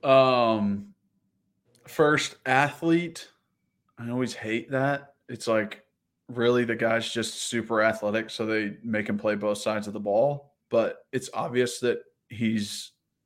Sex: male